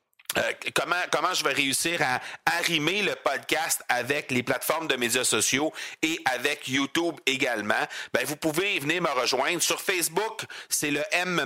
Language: French